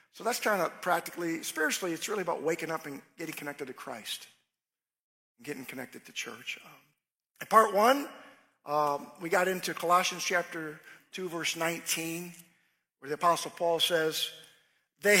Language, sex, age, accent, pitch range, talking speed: English, male, 50-69, American, 165-220 Hz, 155 wpm